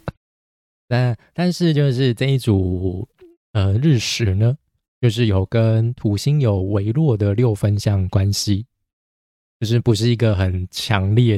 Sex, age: male, 20-39